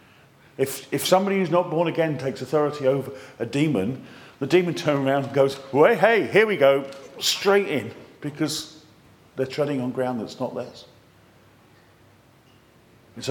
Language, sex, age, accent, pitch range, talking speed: English, male, 50-69, British, 115-175 Hz, 155 wpm